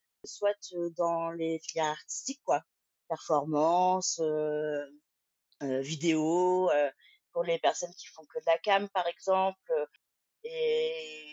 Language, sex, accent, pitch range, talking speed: French, female, French, 170-225 Hz, 115 wpm